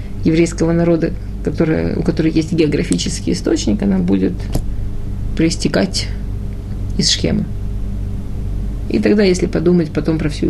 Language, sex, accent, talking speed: Russian, female, native, 115 wpm